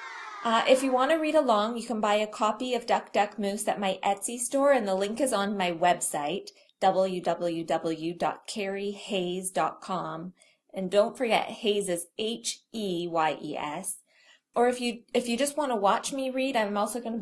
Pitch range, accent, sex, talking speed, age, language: 185-240 Hz, American, female, 170 wpm, 20-39, English